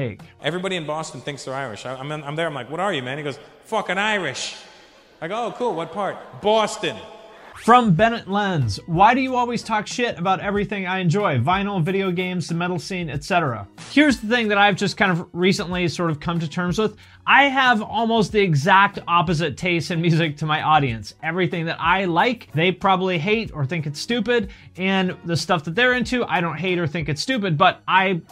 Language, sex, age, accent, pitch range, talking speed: English, male, 30-49, American, 165-215 Hz, 210 wpm